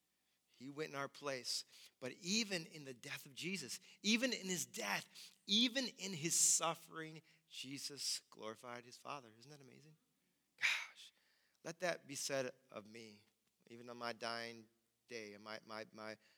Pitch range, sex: 120-165 Hz, male